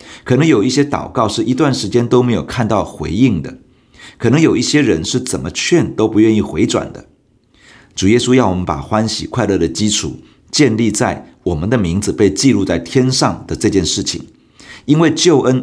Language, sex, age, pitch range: Chinese, male, 50-69, 90-125 Hz